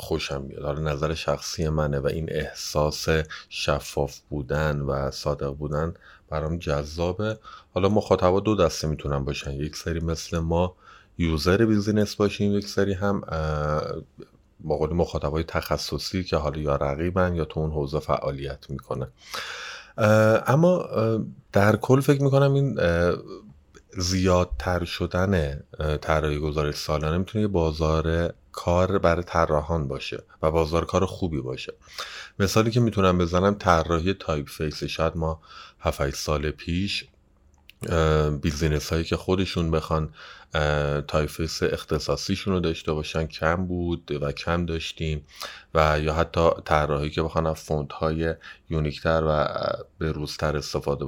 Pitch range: 75-90 Hz